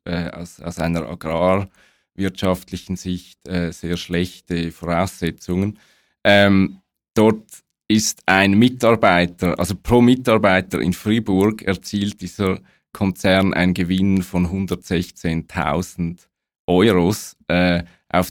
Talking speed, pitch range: 100 wpm, 85-100 Hz